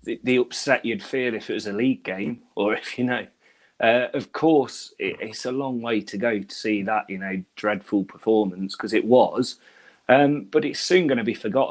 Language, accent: English, British